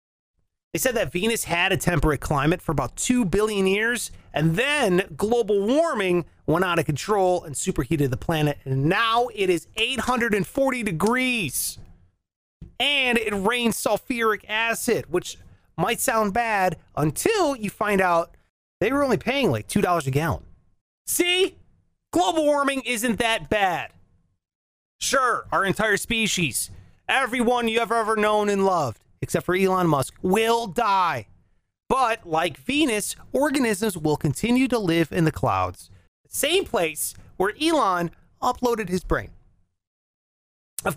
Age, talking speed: 30-49, 140 wpm